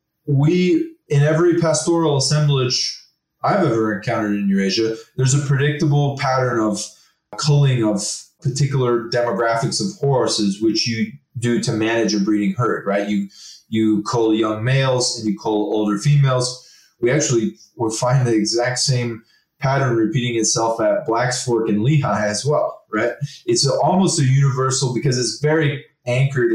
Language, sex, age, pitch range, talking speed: English, male, 20-39, 115-155 Hz, 150 wpm